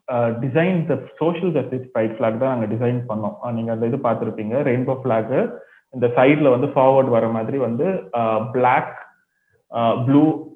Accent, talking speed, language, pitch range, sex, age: native, 75 wpm, Tamil, 115-140 Hz, male, 30-49